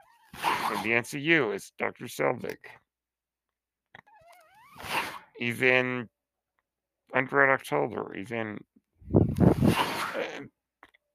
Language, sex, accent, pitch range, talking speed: English, male, American, 105-140 Hz, 70 wpm